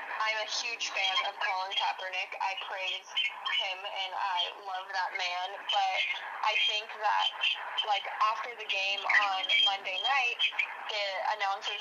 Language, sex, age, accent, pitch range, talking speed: English, female, 10-29, American, 195-250 Hz, 140 wpm